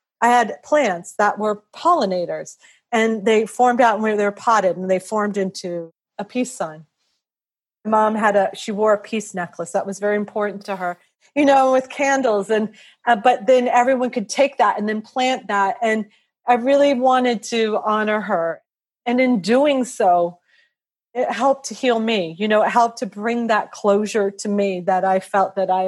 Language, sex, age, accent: English, female, 40-59, American